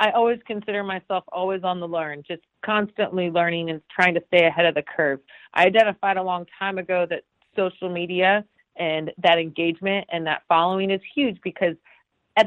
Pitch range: 170-210 Hz